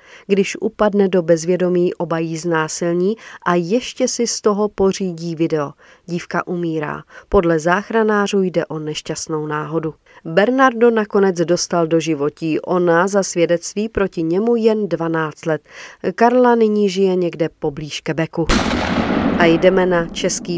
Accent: native